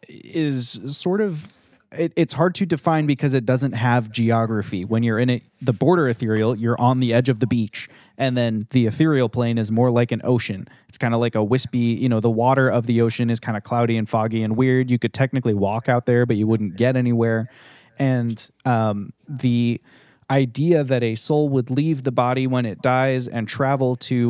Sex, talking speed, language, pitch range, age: male, 210 wpm, English, 115-130 Hz, 20-39